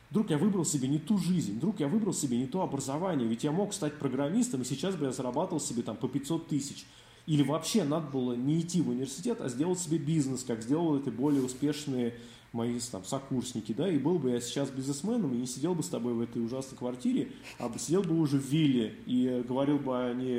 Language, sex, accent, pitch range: Russian, male, native, 120-145 Hz